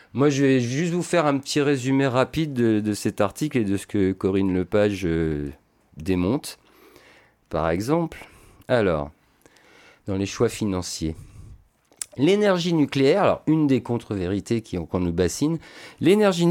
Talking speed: 145 wpm